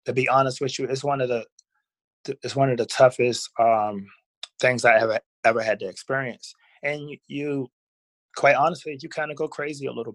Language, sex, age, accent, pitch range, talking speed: English, male, 20-39, American, 115-140 Hz, 195 wpm